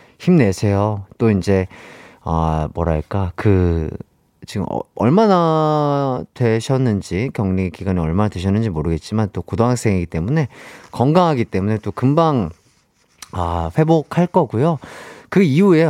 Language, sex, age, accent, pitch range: Korean, male, 30-49, native, 90-150 Hz